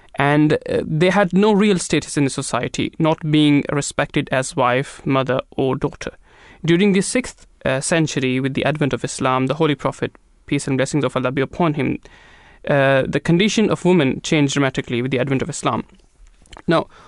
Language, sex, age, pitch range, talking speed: English, male, 20-39, 135-160 Hz, 175 wpm